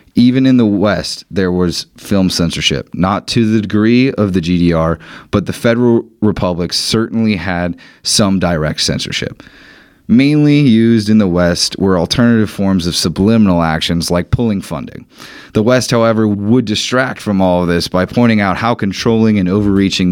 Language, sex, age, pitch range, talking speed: English, male, 30-49, 90-110 Hz, 160 wpm